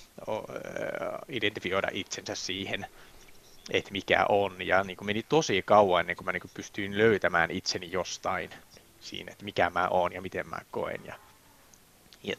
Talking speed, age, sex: 150 wpm, 20-39, male